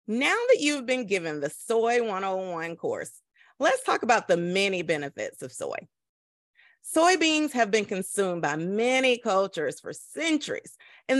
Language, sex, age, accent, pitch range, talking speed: English, female, 30-49, American, 190-275 Hz, 145 wpm